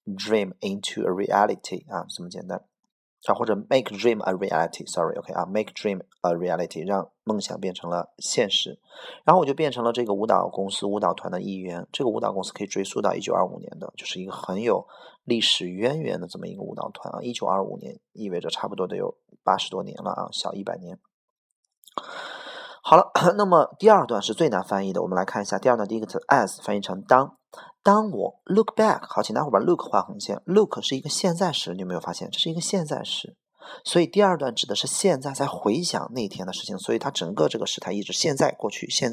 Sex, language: male, Chinese